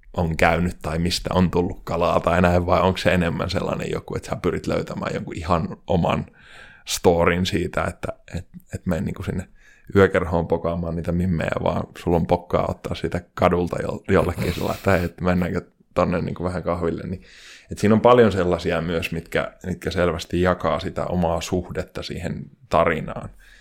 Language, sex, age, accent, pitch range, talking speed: Finnish, male, 20-39, native, 85-95 Hz, 170 wpm